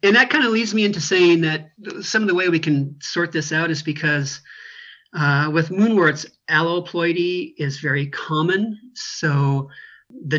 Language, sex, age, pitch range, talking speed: English, male, 40-59, 145-180 Hz, 170 wpm